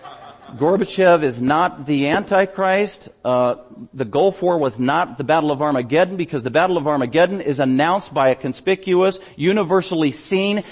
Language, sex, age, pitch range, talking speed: English, male, 50-69, 125-190 Hz, 150 wpm